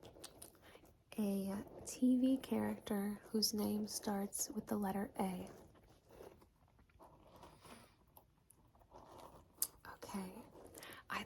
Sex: female